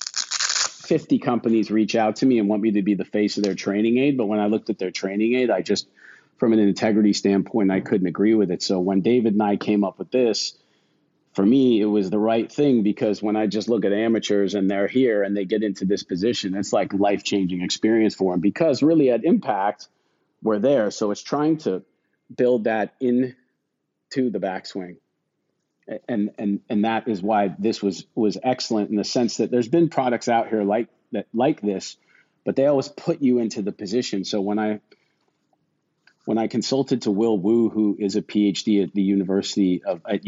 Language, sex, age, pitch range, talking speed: English, male, 40-59, 100-115 Hz, 210 wpm